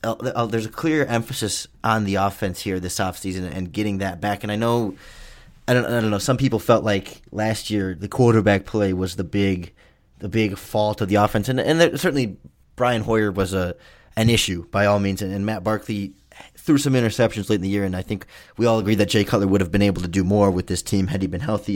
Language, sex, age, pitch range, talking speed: English, male, 20-39, 95-110 Hz, 240 wpm